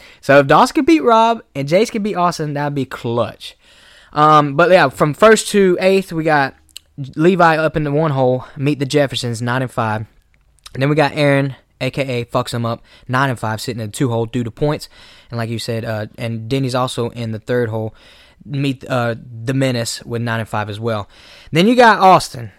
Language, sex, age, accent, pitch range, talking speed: English, male, 20-39, American, 115-155 Hz, 215 wpm